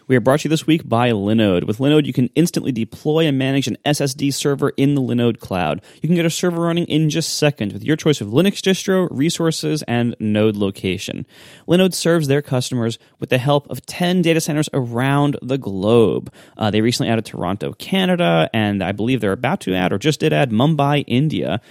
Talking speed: 215 wpm